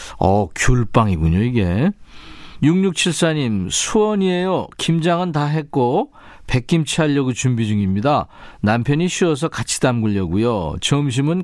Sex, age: male, 40-59